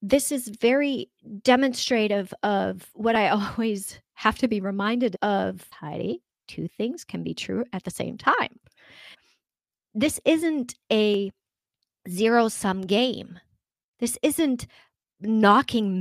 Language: English